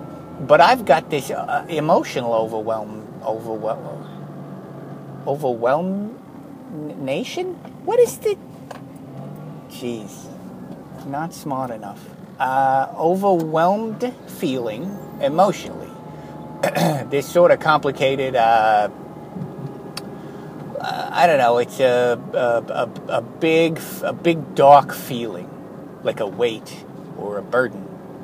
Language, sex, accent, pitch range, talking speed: English, male, American, 120-170 Hz, 95 wpm